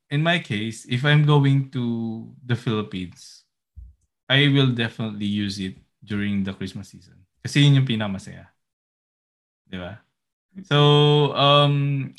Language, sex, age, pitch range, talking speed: Filipino, male, 20-39, 100-140 Hz, 130 wpm